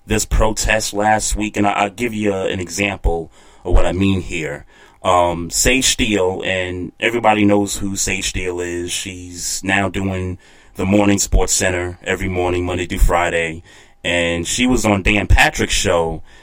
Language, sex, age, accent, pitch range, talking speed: English, male, 30-49, American, 90-110 Hz, 160 wpm